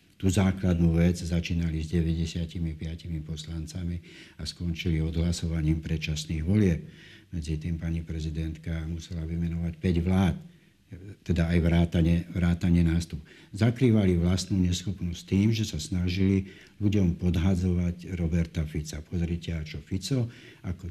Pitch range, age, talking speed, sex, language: 85-95 Hz, 60-79, 115 wpm, male, Slovak